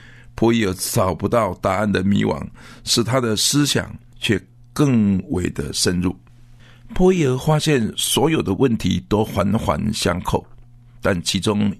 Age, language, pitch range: 60-79, Chinese, 100-125 Hz